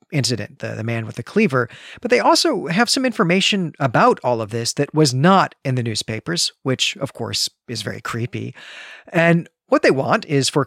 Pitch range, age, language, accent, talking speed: 125-170 Hz, 40-59, English, American, 195 wpm